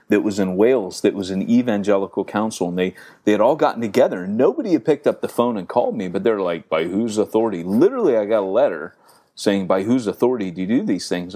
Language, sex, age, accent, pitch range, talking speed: English, male, 30-49, American, 95-135 Hz, 240 wpm